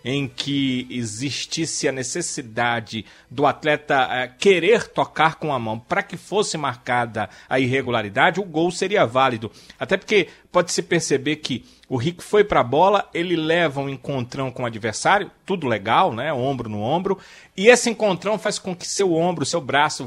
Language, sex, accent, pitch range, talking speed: Portuguese, male, Brazilian, 140-190 Hz, 170 wpm